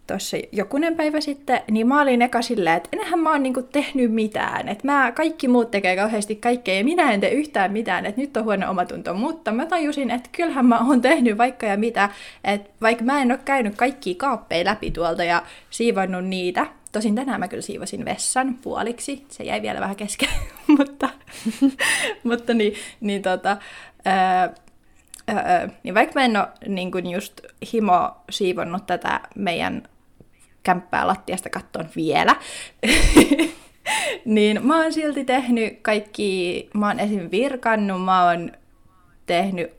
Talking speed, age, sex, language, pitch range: 155 wpm, 20-39, female, Finnish, 190-260 Hz